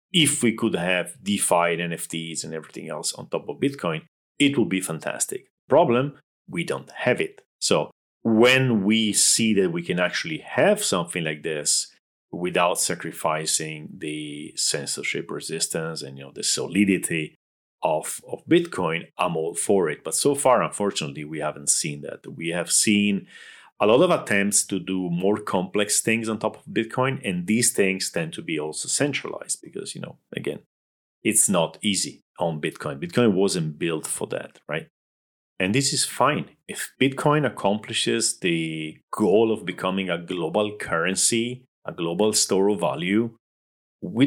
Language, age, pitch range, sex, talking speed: English, 40-59, 80-115 Hz, male, 160 wpm